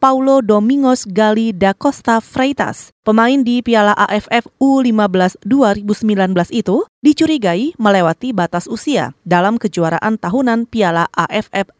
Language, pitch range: Indonesian, 205-265 Hz